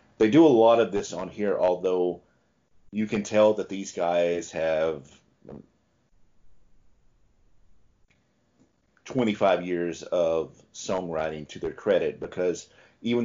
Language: English